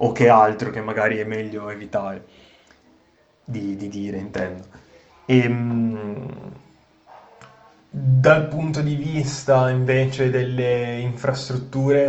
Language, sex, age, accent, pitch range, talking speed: Italian, male, 20-39, native, 110-125 Hz, 95 wpm